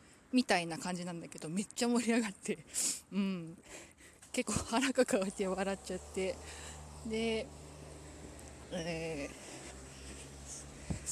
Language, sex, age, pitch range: Japanese, female, 20-39, 170-225 Hz